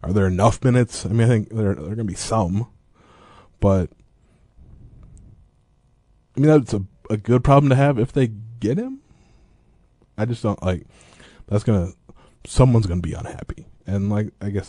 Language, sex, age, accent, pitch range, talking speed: English, male, 20-39, American, 90-120 Hz, 185 wpm